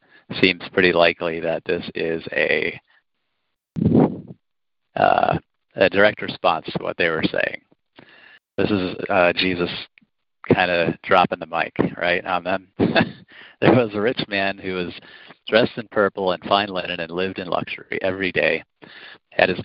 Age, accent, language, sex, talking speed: 40-59, American, English, male, 155 wpm